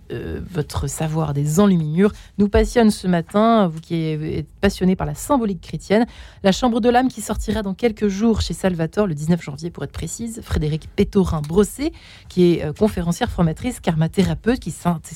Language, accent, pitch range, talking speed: French, French, 175-225 Hz, 180 wpm